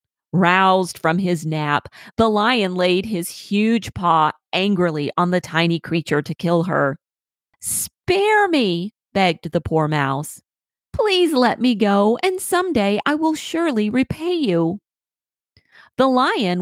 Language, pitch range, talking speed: English, 160-215 Hz, 135 wpm